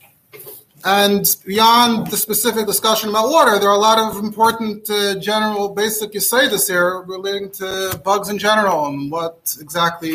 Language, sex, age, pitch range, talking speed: English, male, 30-49, 175-215 Hz, 165 wpm